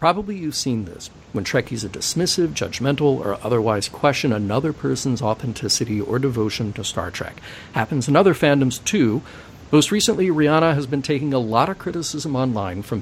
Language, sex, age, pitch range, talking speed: English, male, 50-69, 105-140 Hz, 170 wpm